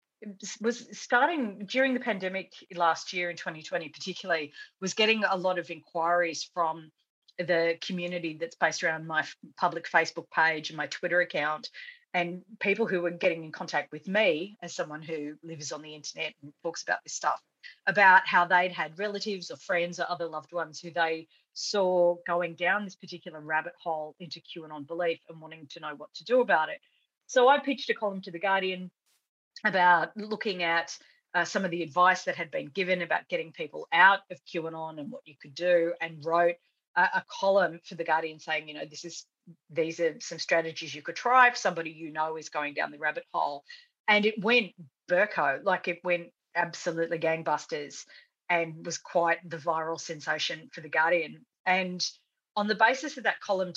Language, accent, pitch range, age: English, Australian, 165-195 Hz, 40-59